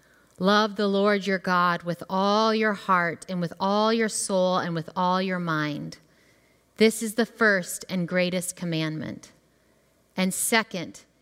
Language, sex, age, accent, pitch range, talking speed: English, female, 30-49, American, 175-220 Hz, 150 wpm